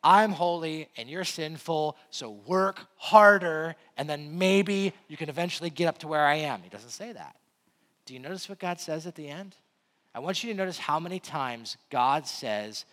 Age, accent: 30-49, American